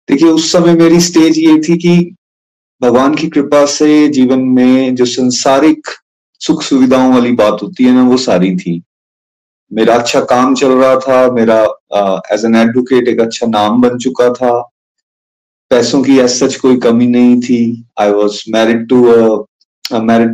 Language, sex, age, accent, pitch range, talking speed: Hindi, male, 30-49, native, 115-175 Hz, 165 wpm